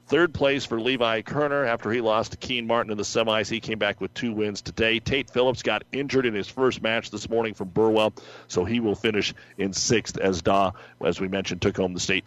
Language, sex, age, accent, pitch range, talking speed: English, male, 50-69, American, 110-125 Hz, 235 wpm